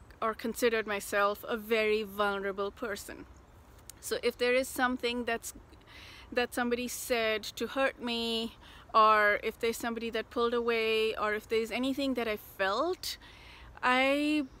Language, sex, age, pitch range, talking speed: English, female, 30-49, 195-245 Hz, 140 wpm